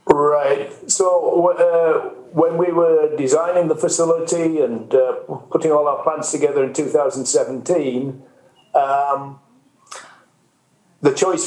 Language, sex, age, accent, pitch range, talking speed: English, male, 50-69, British, 135-175 Hz, 110 wpm